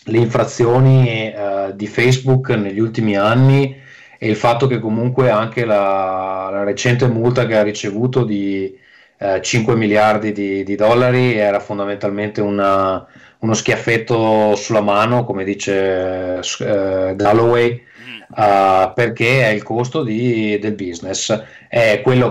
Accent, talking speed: native, 125 wpm